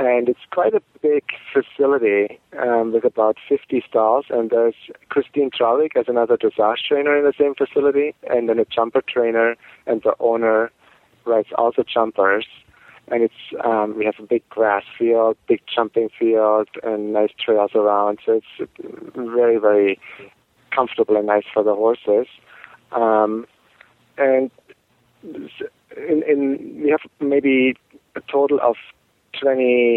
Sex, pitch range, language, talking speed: male, 110-140 Hz, English, 140 wpm